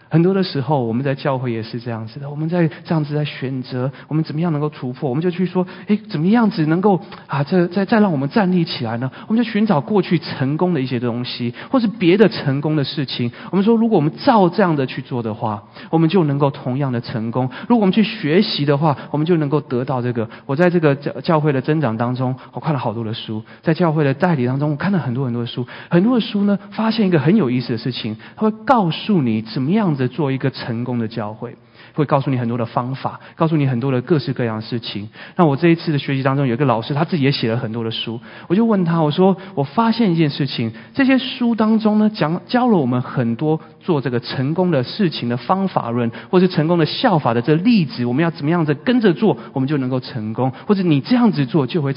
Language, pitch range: Chinese, 125-185 Hz